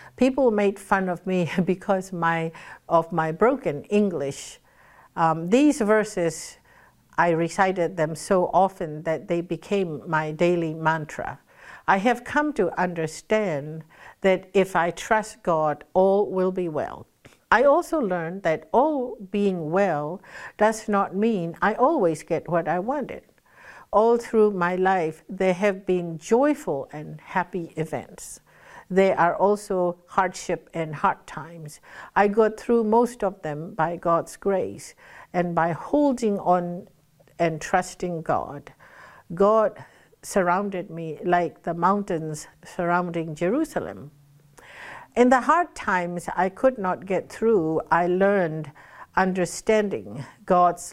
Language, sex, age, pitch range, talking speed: English, female, 60-79, 165-200 Hz, 130 wpm